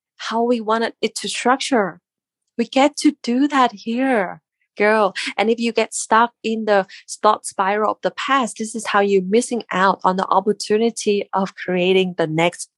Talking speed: 180 wpm